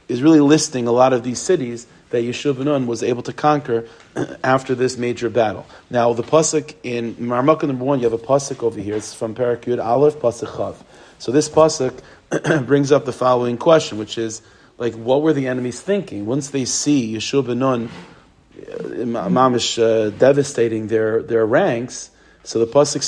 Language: English